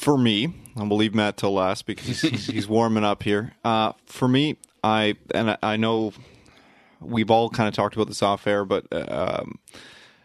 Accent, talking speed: American, 195 wpm